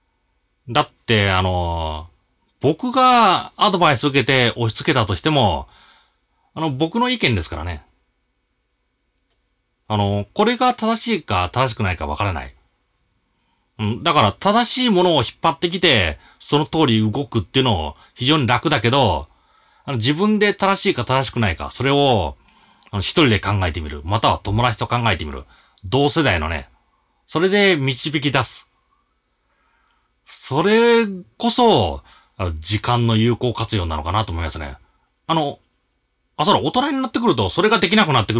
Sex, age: male, 30-49